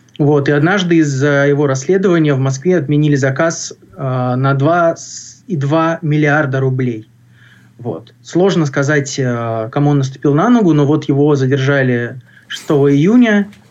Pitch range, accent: 135-160 Hz, native